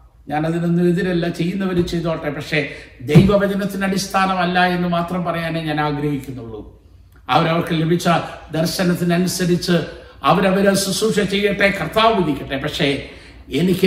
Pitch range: 140-225 Hz